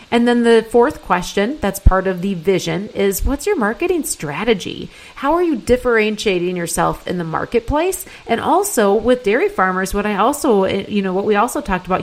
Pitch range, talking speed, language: 190-250 Hz, 190 wpm, English